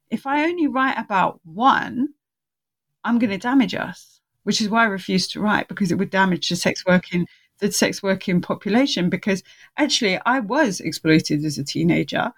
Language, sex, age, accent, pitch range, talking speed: English, female, 30-49, British, 185-245 Hz, 175 wpm